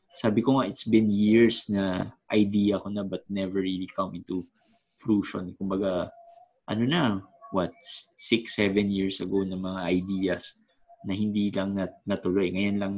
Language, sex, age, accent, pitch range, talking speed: Filipino, male, 20-39, native, 95-125 Hz, 160 wpm